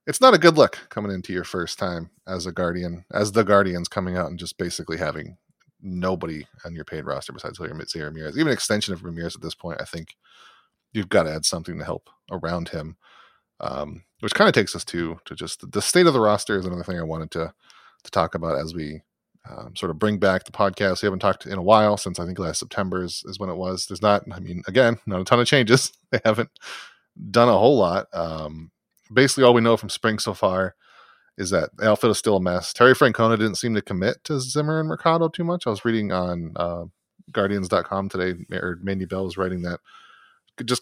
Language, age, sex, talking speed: English, 30-49, male, 230 wpm